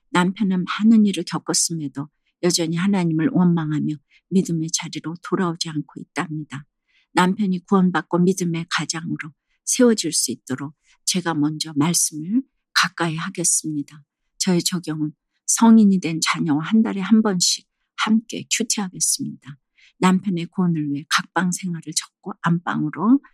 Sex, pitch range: female, 155-195 Hz